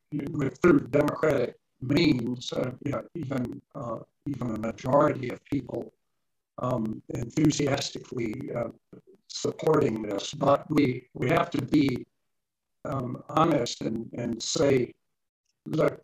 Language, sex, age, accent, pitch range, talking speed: English, male, 50-69, American, 125-150 Hz, 115 wpm